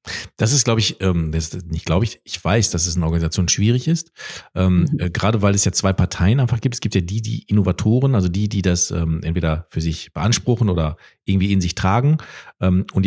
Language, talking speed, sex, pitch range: German, 205 wpm, male, 90-115 Hz